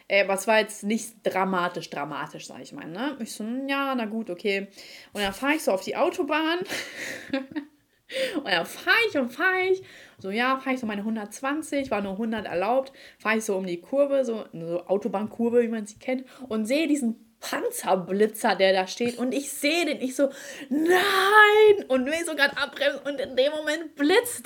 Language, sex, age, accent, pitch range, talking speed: German, female, 20-39, German, 220-300 Hz, 200 wpm